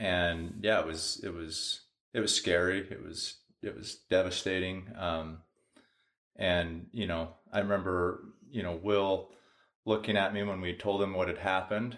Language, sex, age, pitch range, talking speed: English, male, 30-49, 85-105 Hz, 165 wpm